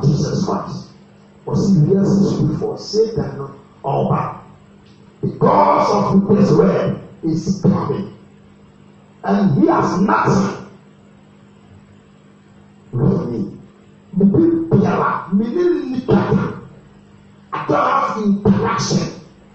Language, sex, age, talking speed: English, male, 50-69, 85 wpm